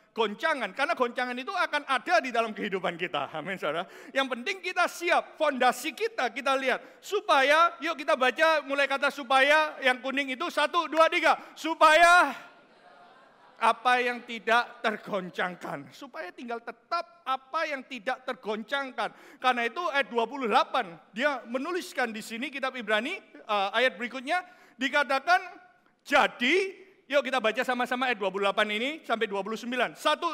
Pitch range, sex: 225-315 Hz, male